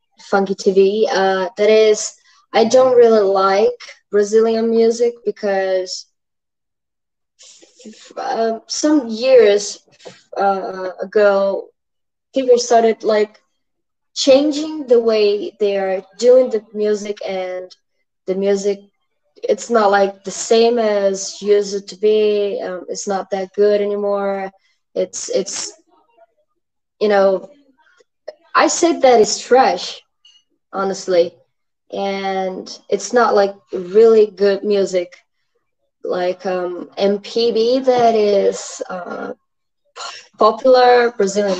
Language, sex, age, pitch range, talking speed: English, female, 20-39, 190-240 Hz, 100 wpm